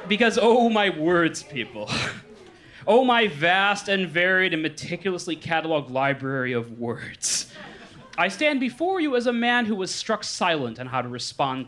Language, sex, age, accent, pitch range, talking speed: English, male, 30-49, American, 125-200 Hz, 160 wpm